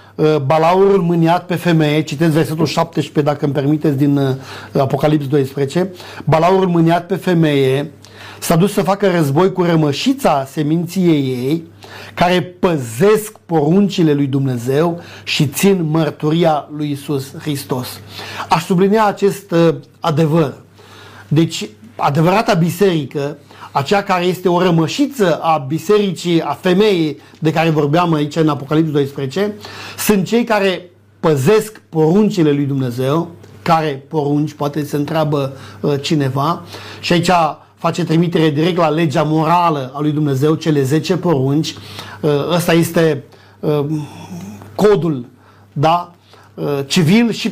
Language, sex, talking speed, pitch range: Romanian, male, 120 wpm, 140-175 Hz